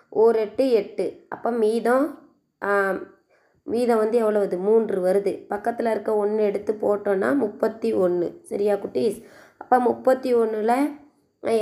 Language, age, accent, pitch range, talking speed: Tamil, 20-39, native, 210-245 Hz, 105 wpm